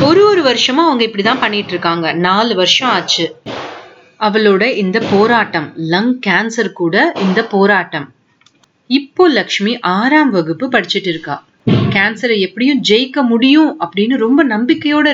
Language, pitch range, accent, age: Tamil, 175-255 Hz, native, 30-49